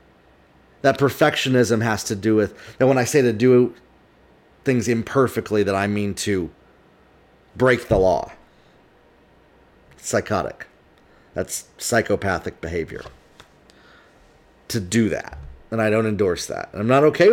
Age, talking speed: 30-49, 130 wpm